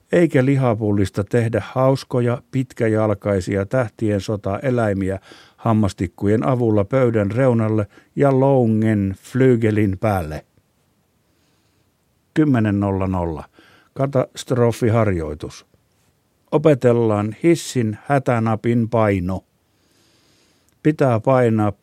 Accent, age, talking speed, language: native, 50-69, 65 wpm, Finnish